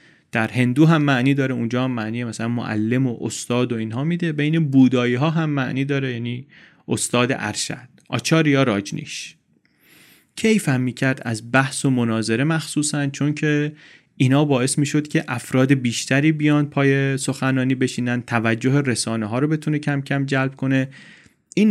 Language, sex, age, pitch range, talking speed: Persian, male, 30-49, 115-150 Hz, 160 wpm